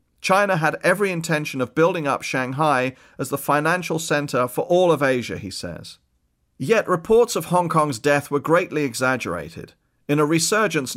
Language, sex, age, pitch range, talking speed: English, male, 40-59, 130-165 Hz, 165 wpm